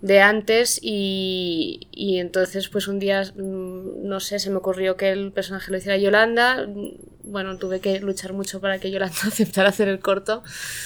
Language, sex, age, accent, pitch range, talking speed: Spanish, female, 20-39, Spanish, 195-225 Hz, 170 wpm